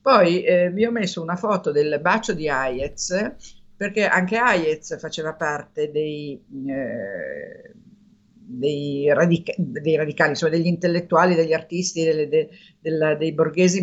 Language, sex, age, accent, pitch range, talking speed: Italian, female, 50-69, native, 155-190 Hz, 140 wpm